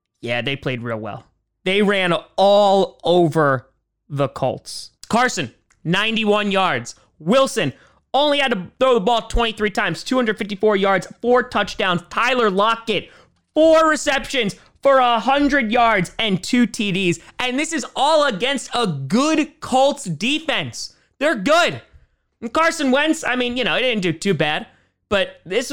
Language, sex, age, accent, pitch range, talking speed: English, male, 30-49, American, 155-240 Hz, 140 wpm